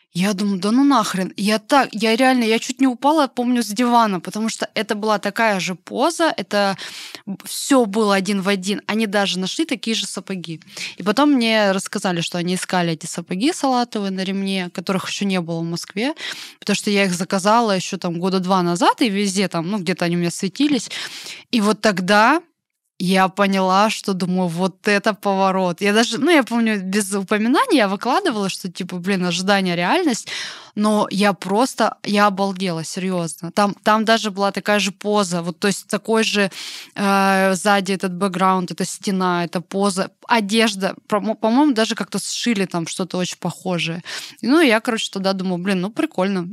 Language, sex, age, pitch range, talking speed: Russian, female, 20-39, 190-225 Hz, 180 wpm